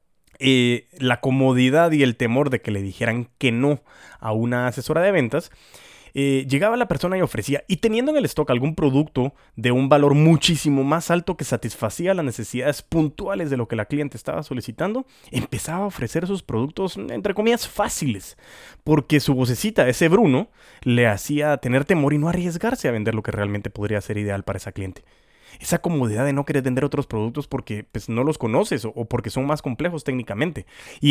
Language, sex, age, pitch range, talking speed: Spanish, male, 30-49, 120-160 Hz, 190 wpm